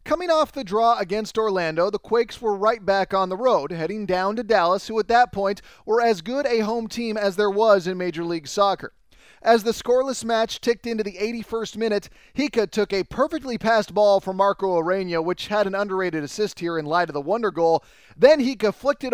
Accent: American